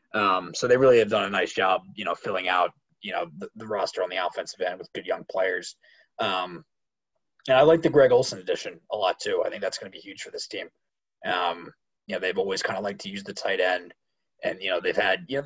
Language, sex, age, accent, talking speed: English, male, 20-39, American, 260 wpm